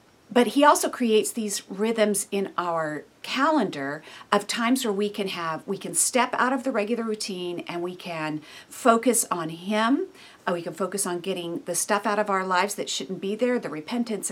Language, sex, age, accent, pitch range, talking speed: English, female, 50-69, American, 180-255 Hz, 195 wpm